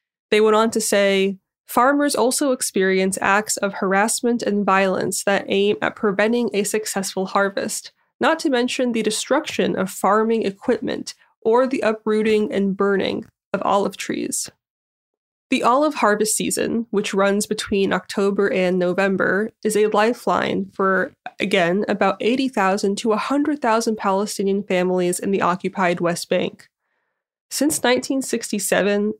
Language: English